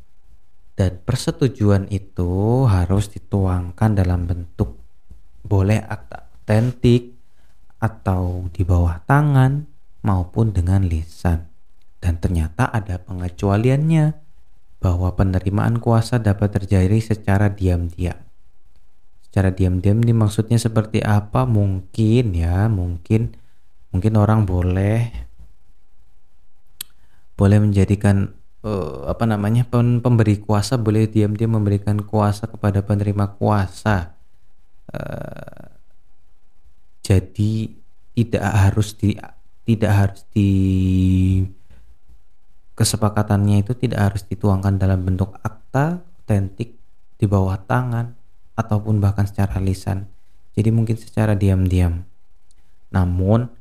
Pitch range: 90-110 Hz